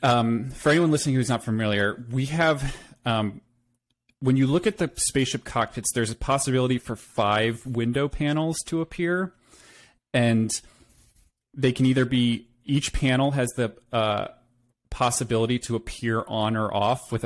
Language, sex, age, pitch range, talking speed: English, male, 30-49, 115-130 Hz, 150 wpm